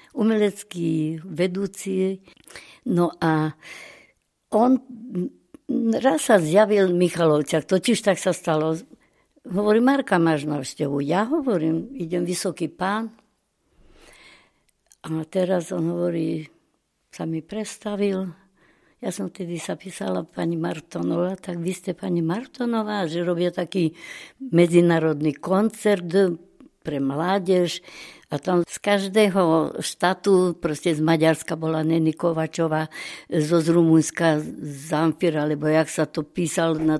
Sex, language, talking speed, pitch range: female, Slovak, 115 wpm, 160-195 Hz